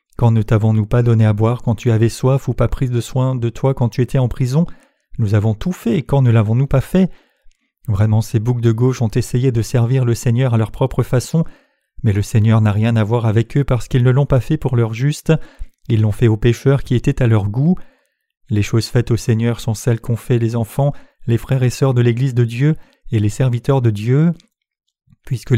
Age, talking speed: 30-49, 235 wpm